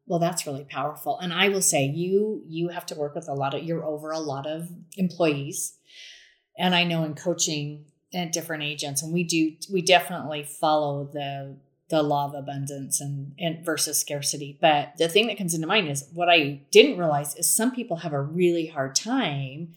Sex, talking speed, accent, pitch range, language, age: female, 200 wpm, American, 150-185 Hz, English, 30-49